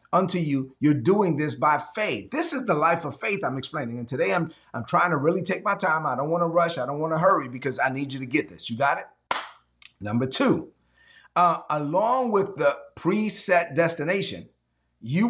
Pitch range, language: 150-215 Hz, English